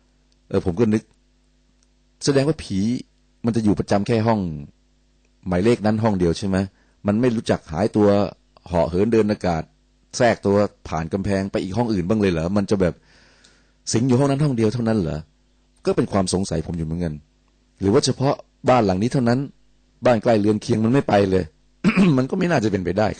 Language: Thai